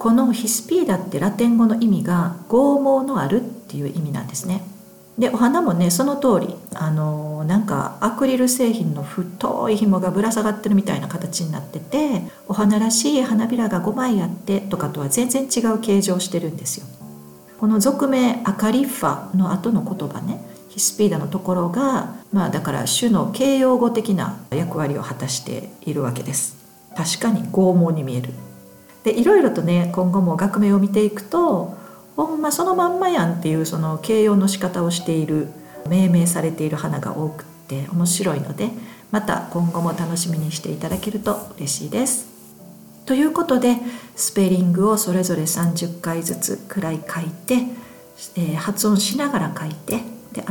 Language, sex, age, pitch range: Japanese, female, 50-69, 170-230 Hz